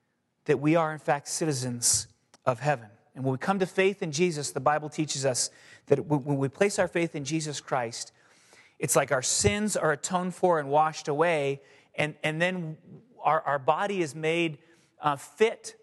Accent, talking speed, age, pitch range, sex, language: American, 185 wpm, 30-49, 140-190 Hz, male, English